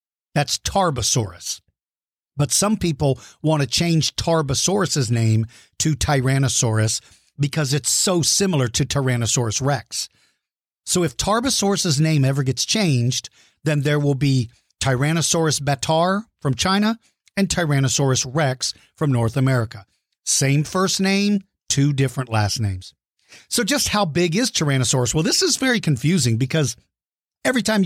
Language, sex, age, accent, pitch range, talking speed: English, male, 50-69, American, 135-190 Hz, 130 wpm